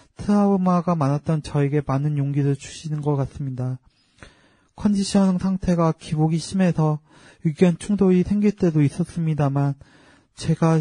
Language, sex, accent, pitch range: Korean, male, native, 145-170 Hz